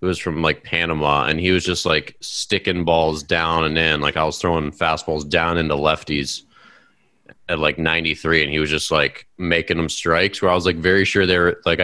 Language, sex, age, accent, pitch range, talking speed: English, male, 30-49, American, 80-95 Hz, 220 wpm